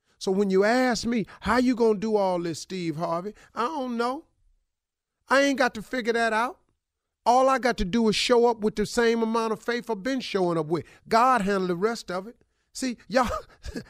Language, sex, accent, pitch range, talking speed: English, male, American, 195-250 Hz, 220 wpm